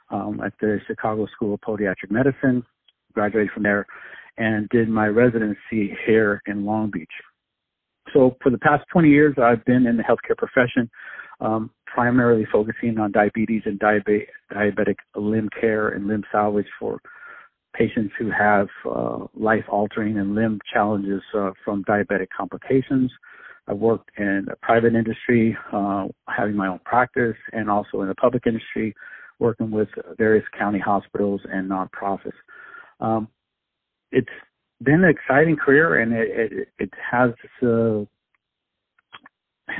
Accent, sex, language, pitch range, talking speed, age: American, male, English, 105-120 Hz, 140 wpm, 50-69